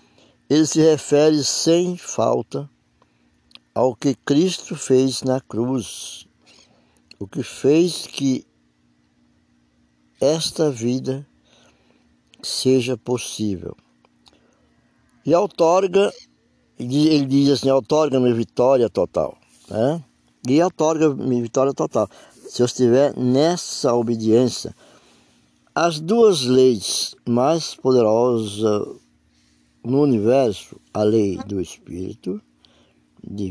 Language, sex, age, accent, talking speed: Portuguese, male, 60-79, Brazilian, 90 wpm